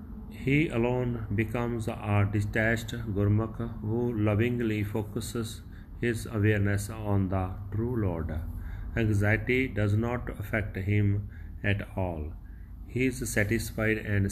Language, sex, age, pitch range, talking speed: Punjabi, male, 30-49, 95-115 Hz, 110 wpm